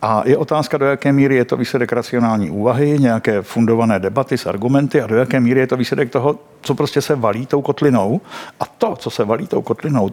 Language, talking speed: Czech, 220 wpm